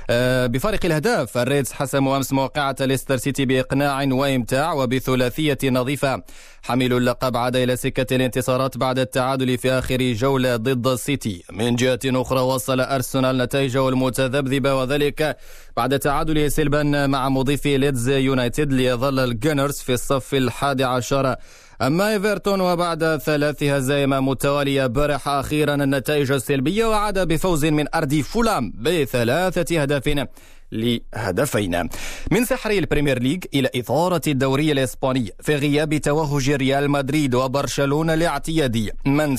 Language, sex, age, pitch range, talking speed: Arabic, male, 20-39, 130-160 Hz, 120 wpm